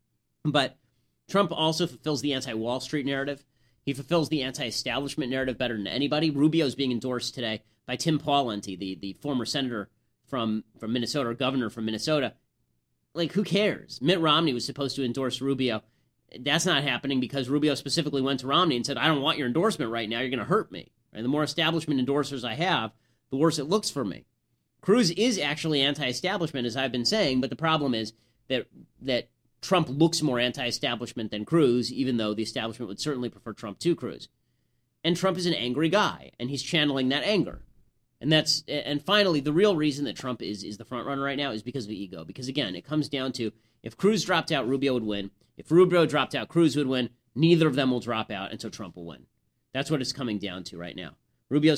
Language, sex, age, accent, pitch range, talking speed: English, male, 30-49, American, 120-150 Hz, 210 wpm